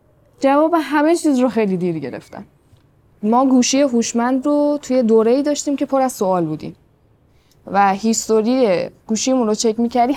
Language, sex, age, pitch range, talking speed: Persian, female, 10-29, 190-250 Hz, 155 wpm